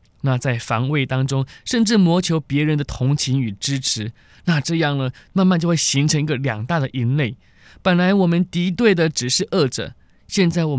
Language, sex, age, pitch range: Chinese, male, 20-39, 130-175 Hz